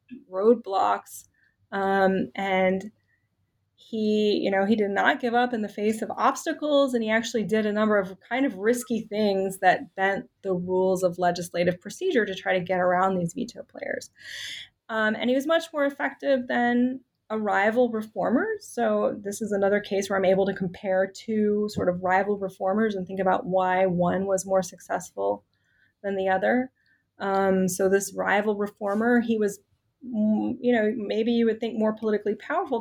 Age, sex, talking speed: 30-49, female, 170 wpm